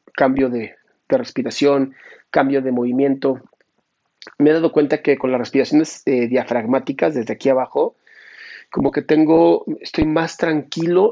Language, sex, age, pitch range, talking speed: Spanish, male, 40-59, 130-165 Hz, 140 wpm